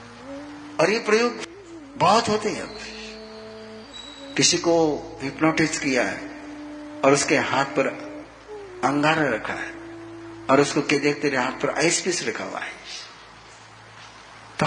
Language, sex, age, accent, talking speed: Hindi, male, 50-69, native, 120 wpm